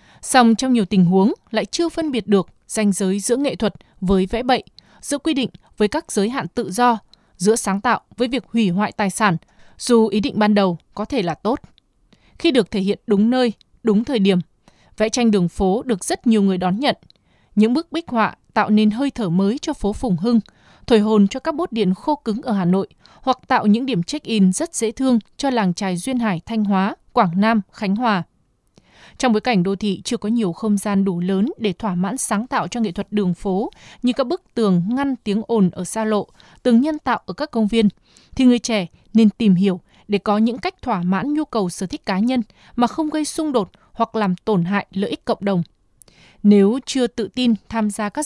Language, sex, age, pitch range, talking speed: Vietnamese, female, 20-39, 195-245 Hz, 230 wpm